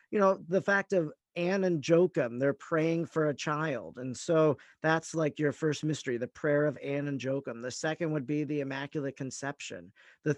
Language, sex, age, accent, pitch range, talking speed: English, male, 40-59, American, 145-180 Hz, 195 wpm